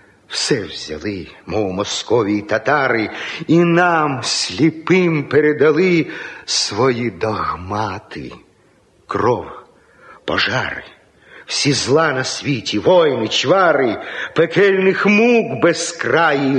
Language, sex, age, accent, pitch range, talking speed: Ukrainian, male, 50-69, native, 105-165 Hz, 85 wpm